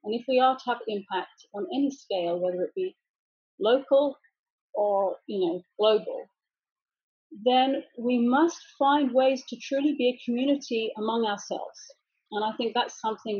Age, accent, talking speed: 40-59, British, 150 wpm